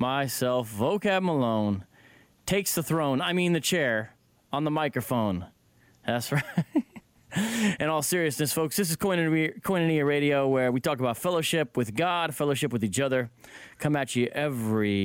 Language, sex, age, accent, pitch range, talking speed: English, male, 30-49, American, 125-180 Hz, 150 wpm